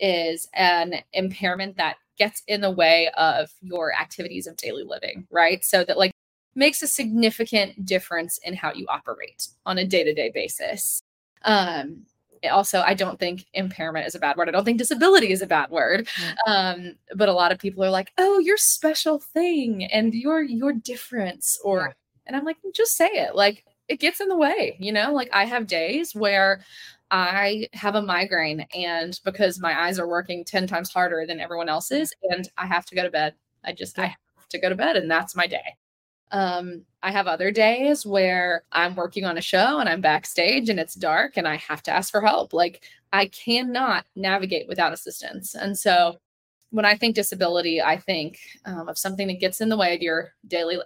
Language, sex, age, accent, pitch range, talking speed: English, female, 20-39, American, 175-220 Hz, 200 wpm